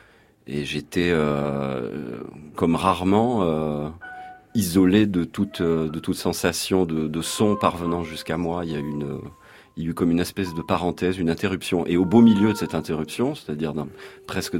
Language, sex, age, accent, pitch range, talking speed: French, male, 40-59, French, 85-110 Hz, 175 wpm